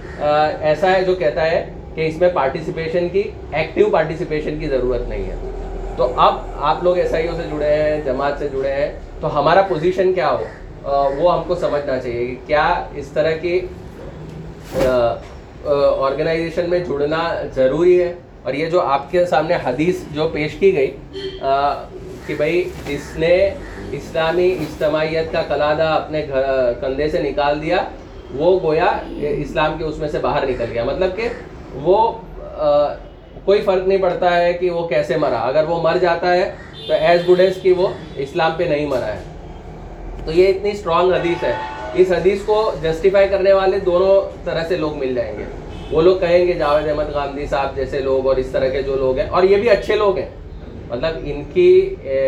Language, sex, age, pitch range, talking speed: Urdu, male, 30-49, 145-180 Hz, 175 wpm